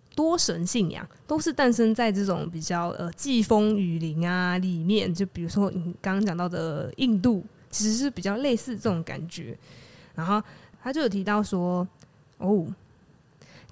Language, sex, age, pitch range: Chinese, female, 20-39, 175-240 Hz